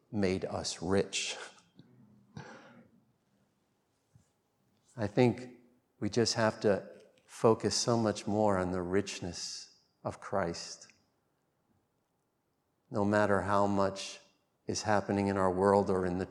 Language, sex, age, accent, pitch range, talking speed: English, male, 50-69, American, 95-105 Hz, 110 wpm